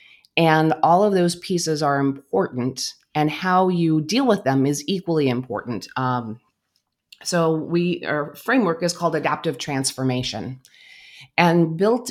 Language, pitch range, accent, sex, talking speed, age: English, 130-165 Hz, American, female, 135 wpm, 30-49